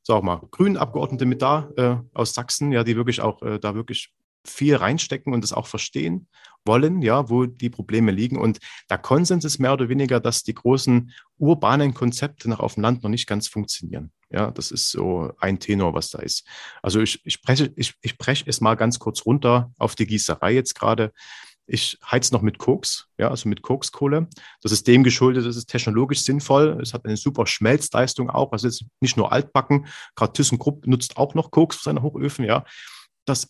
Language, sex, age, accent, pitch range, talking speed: German, male, 40-59, German, 110-140 Hz, 195 wpm